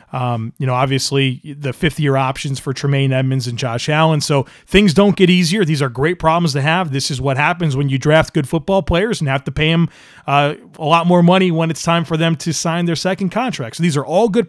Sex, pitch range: male, 135-175 Hz